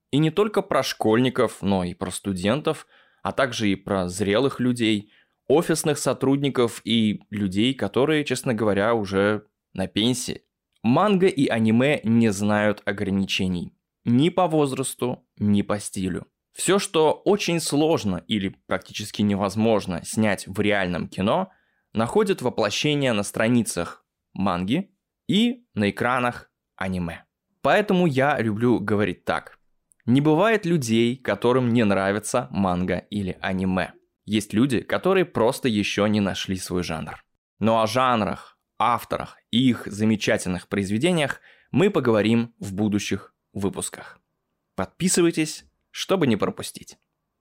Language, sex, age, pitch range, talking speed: Russian, male, 20-39, 100-135 Hz, 125 wpm